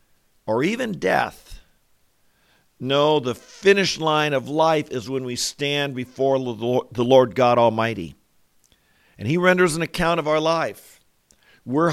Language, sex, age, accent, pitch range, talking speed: English, male, 50-69, American, 120-155 Hz, 135 wpm